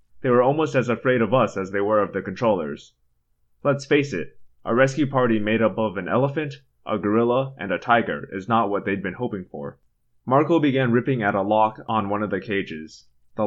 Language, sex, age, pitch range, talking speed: English, male, 20-39, 95-135 Hz, 215 wpm